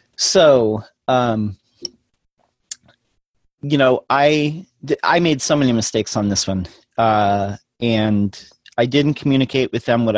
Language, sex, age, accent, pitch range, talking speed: English, male, 30-49, American, 105-130 Hz, 130 wpm